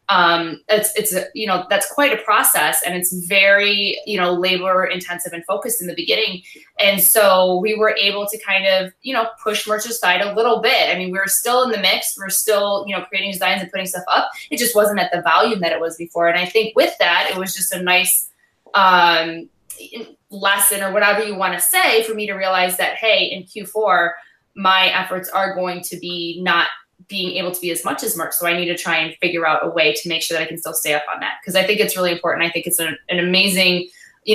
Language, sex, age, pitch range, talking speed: English, female, 20-39, 175-215 Hz, 240 wpm